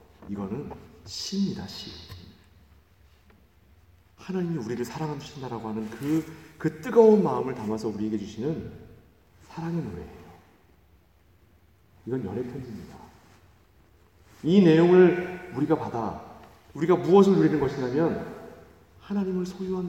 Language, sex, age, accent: Korean, male, 40-59, native